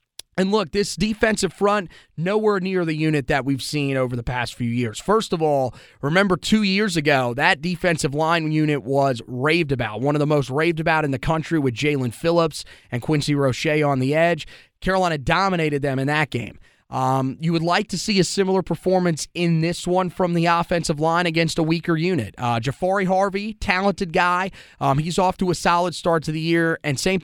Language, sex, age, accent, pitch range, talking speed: English, male, 30-49, American, 140-185 Hz, 205 wpm